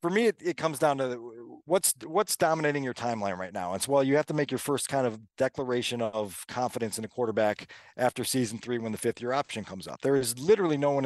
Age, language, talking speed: 40-59, English, 250 wpm